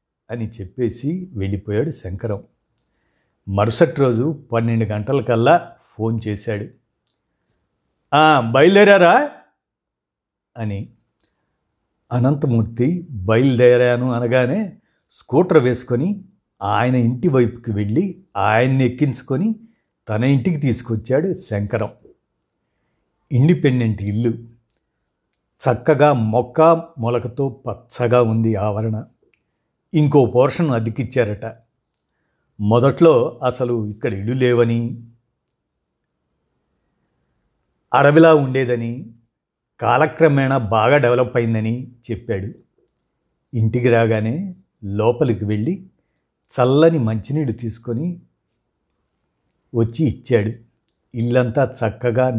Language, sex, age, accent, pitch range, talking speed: Telugu, male, 50-69, native, 110-140 Hz, 70 wpm